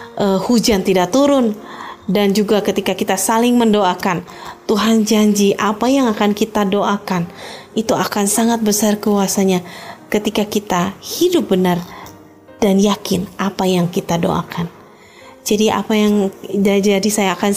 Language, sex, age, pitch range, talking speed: Indonesian, female, 20-39, 190-220 Hz, 130 wpm